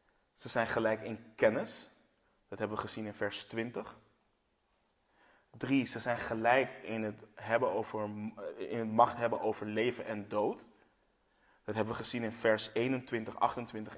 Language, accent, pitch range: Dutch, Dutch, 110-125 Hz